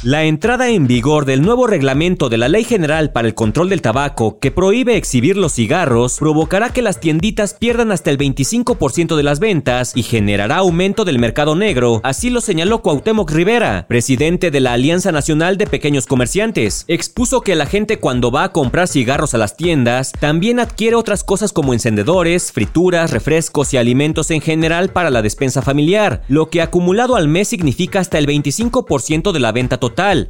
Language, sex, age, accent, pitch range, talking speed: Spanish, male, 40-59, Mexican, 135-190 Hz, 185 wpm